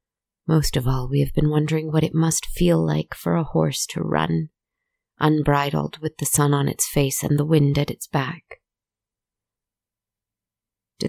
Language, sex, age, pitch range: English, female, 30-49, 140-155 Hz